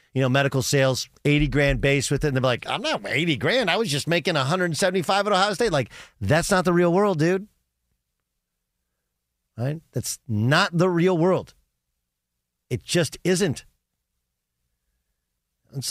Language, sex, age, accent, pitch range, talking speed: English, male, 40-59, American, 115-170 Hz, 155 wpm